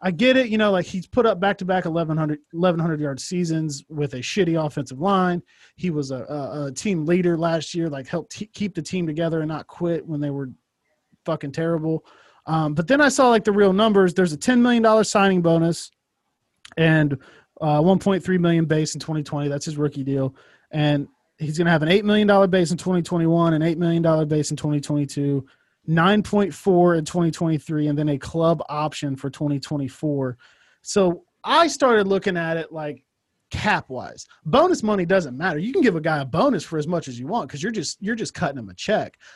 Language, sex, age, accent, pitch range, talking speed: English, male, 20-39, American, 150-185 Hz, 220 wpm